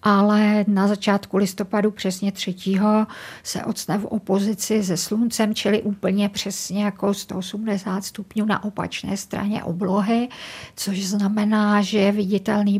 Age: 50-69